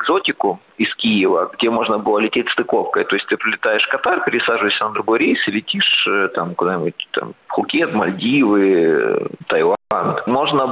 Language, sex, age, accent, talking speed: Ukrainian, male, 30-49, native, 150 wpm